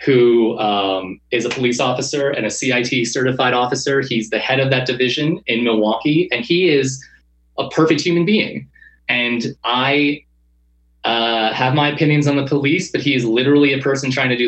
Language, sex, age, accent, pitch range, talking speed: English, male, 20-39, American, 120-165 Hz, 180 wpm